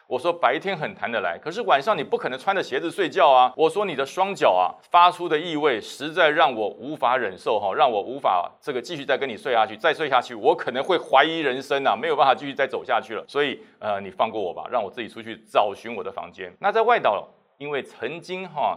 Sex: male